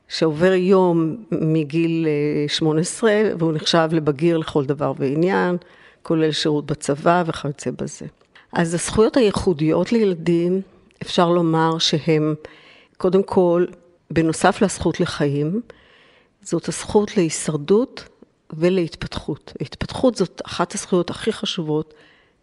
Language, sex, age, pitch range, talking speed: Hebrew, female, 50-69, 155-195 Hz, 100 wpm